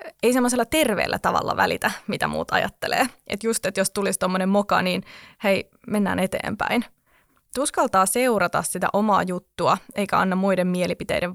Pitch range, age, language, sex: 185-225 Hz, 20-39, Finnish, female